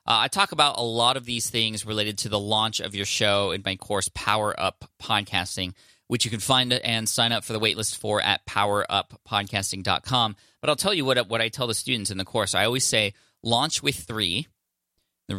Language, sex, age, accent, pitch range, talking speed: English, male, 20-39, American, 100-120 Hz, 215 wpm